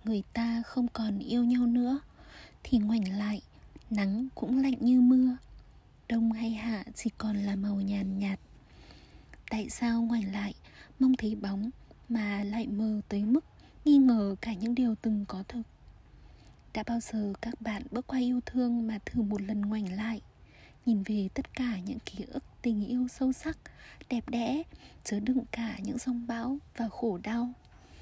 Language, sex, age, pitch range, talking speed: Vietnamese, female, 20-39, 210-250 Hz, 175 wpm